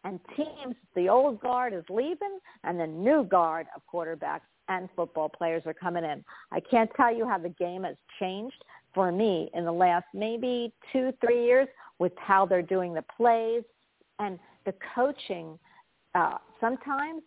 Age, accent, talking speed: 50-69, American, 165 wpm